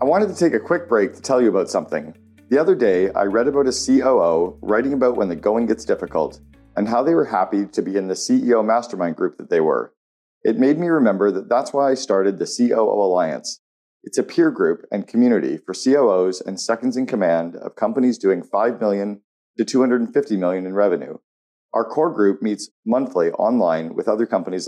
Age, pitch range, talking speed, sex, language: 40-59, 95-130 Hz, 205 wpm, male, English